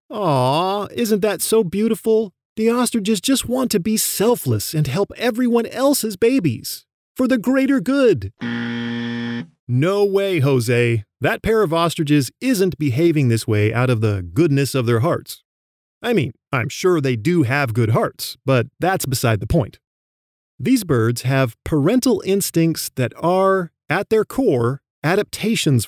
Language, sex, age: English, male, 30-49